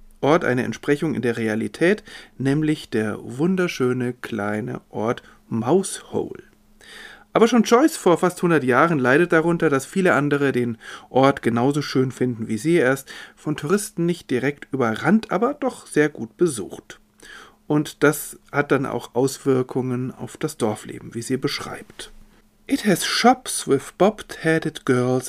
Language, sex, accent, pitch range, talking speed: German, male, German, 125-175 Hz, 140 wpm